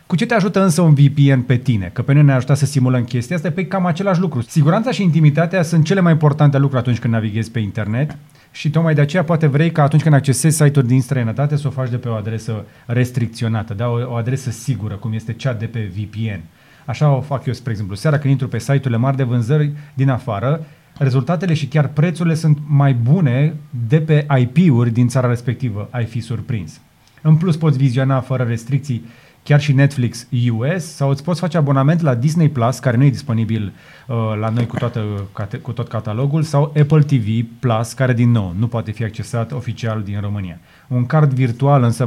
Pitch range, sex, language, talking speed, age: 120-155 Hz, male, Romanian, 205 wpm, 30-49